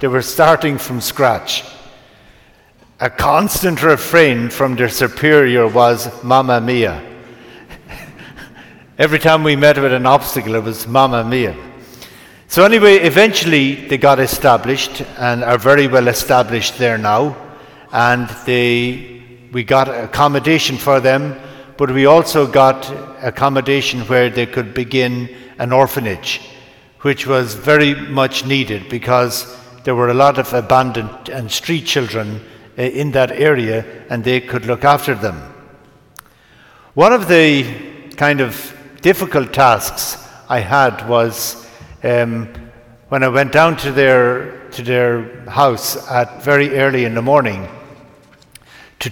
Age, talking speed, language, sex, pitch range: 60-79, 130 wpm, English, male, 120-140 Hz